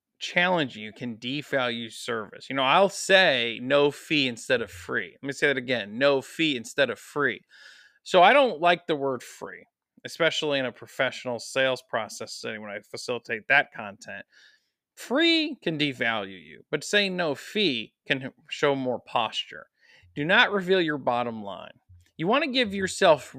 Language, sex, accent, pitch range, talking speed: English, male, American, 120-190 Hz, 170 wpm